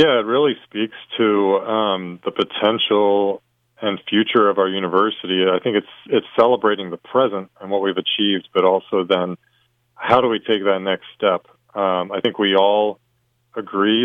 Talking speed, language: 170 wpm, English